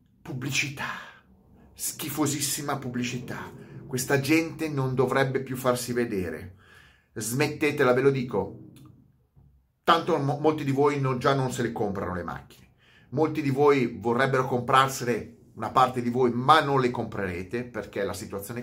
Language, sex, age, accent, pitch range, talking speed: Italian, male, 30-49, native, 125-165 Hz, 135 wpm